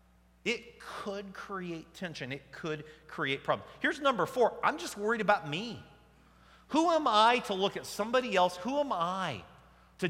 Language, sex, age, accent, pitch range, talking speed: English, male, 40-59, American, 135-195 Hz, 165 wpm